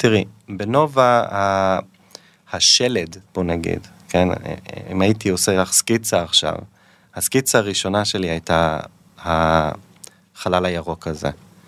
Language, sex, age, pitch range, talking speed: Hebrew, male, 20-39, 90-110 Hz, 100 wpm